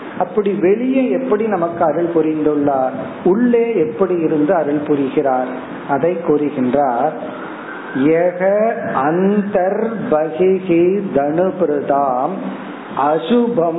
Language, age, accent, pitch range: Tamil, 50-69, native, 160-215 Hz